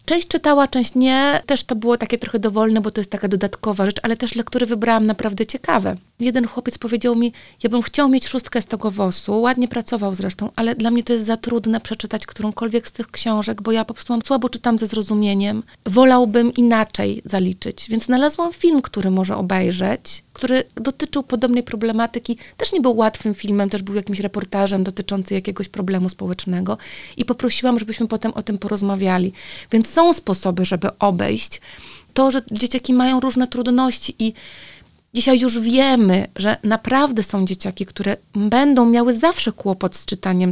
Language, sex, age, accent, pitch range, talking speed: Polish, female, 30-49, native, 205-250 Hz, 175 wpm